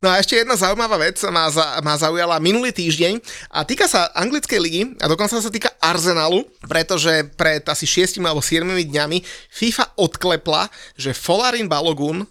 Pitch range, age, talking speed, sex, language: 150-185 Hz, 30-49, 165 wpm, male, Slovak